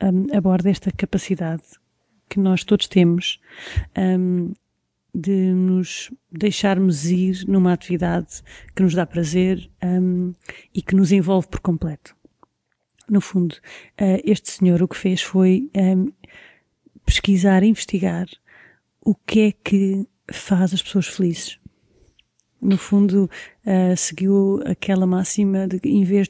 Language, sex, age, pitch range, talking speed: Portuguese, female, 30-49, 180-200 Hz, 125 wpm